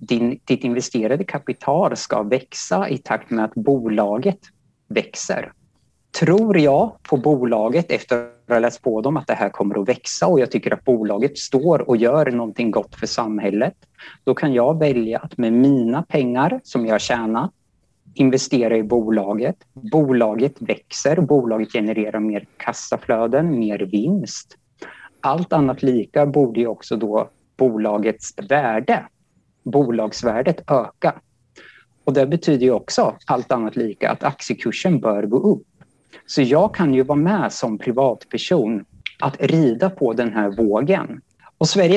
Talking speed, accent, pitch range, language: 145 wpm, Norwegian, 110-150 Hz, Swedish